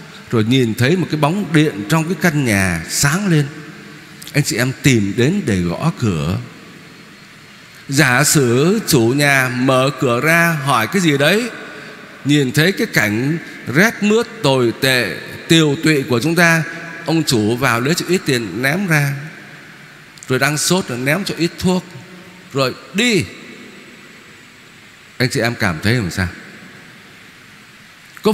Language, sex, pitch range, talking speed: Vietnamese, male, 130-195 Hz, 150 wpm